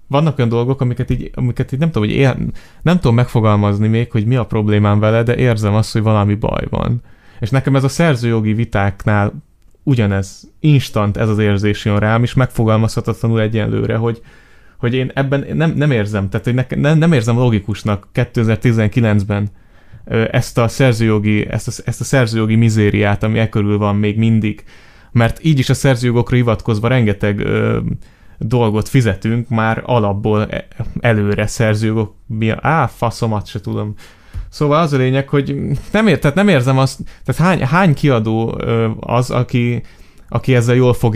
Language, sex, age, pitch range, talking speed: Hungarian, male, 30-49, 105-130 Hz, 160 wpm